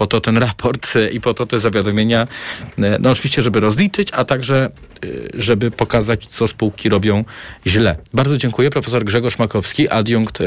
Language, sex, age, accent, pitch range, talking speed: Polish, male, 40-59, native, 100-120 Hz, 155 wpm